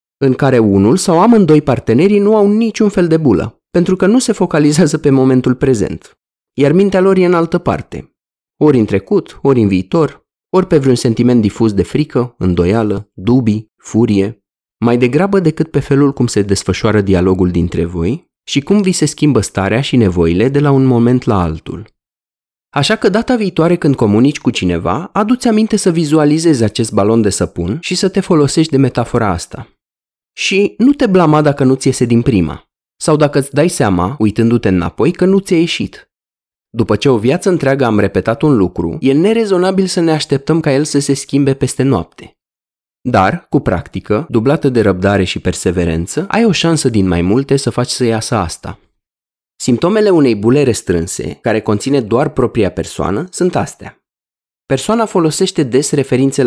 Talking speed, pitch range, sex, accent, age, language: 175 wpm, 100-160 Hz, male, native, 30-49, Romanian